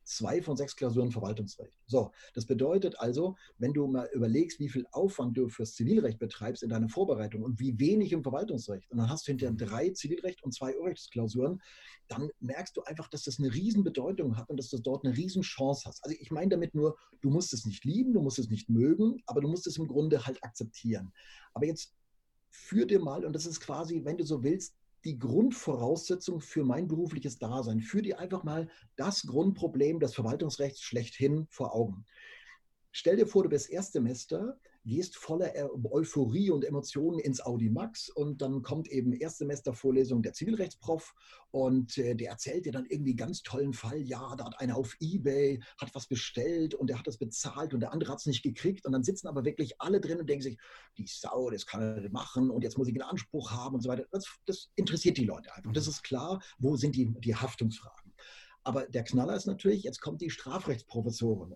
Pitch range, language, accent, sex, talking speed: 120-165 Hz, German, German, male, 200 wpm